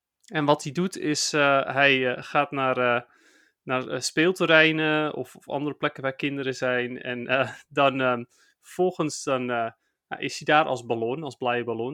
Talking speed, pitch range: 180 wpm, 130-170 Hz